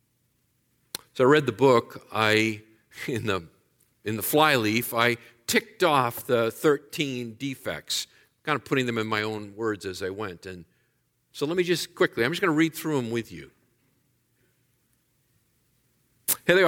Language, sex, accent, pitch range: English, male, American, 120-160 Hz